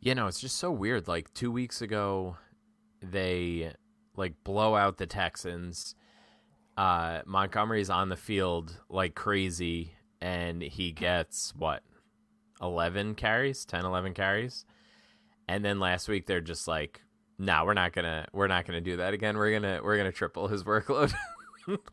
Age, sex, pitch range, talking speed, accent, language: 20-39, male, 90-110 Hz, 170 wpm, American, English